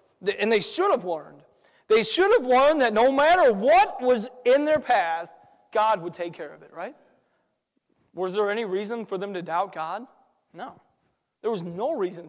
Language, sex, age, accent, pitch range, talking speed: English, male, 40-59, American, 205-295 Hz, 185 wpm